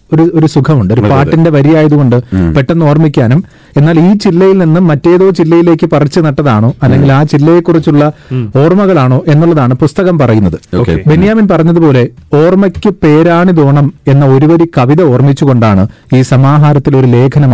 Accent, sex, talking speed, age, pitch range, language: native, male, 125 wpm, 30-49, 130-160 Hz, Malayalam